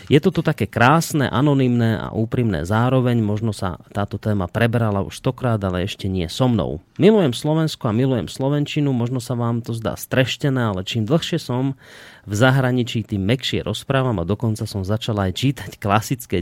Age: 30-49